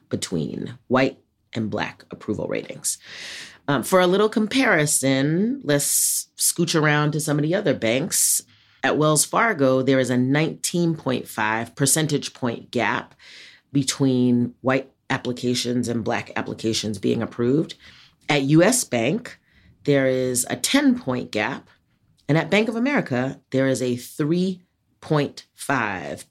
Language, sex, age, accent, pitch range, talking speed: English, female, 40-59, American, 120-150 Hz, 130 wpm